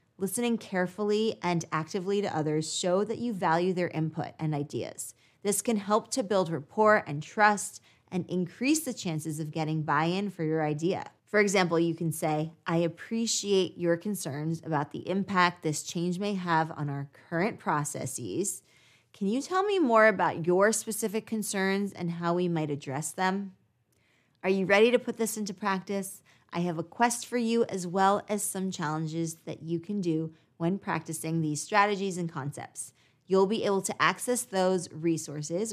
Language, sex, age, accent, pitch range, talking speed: English, female, 20-39, American, 160-200 Hz, 175 wpm